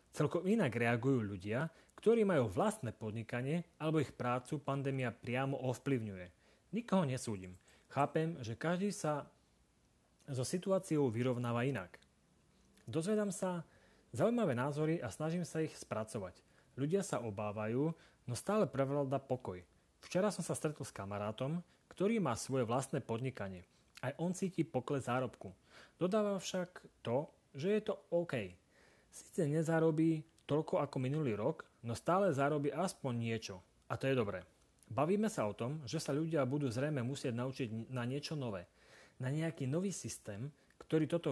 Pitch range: 115-160 Hz